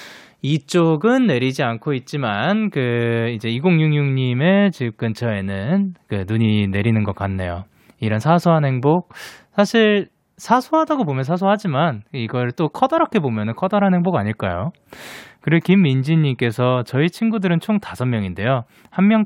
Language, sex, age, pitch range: Korean, male, 20-39, 110-175 Hz